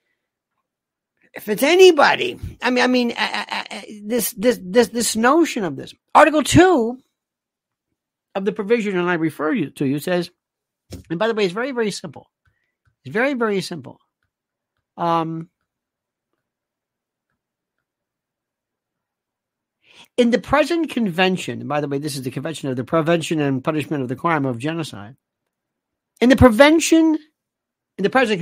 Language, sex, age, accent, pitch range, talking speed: English, male, 60-79, American, 170-250 Hz, 150 wpm